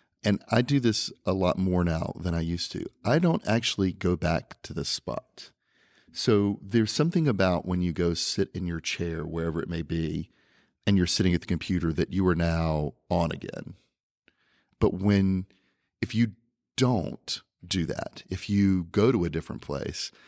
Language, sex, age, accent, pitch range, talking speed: English, male, 40-59, American, 85-110 Hz, 180 wpm